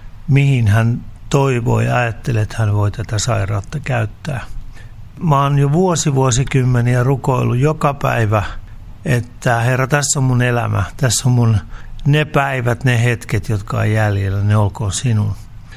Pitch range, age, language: 105-130 Hz, 60-79, Finnish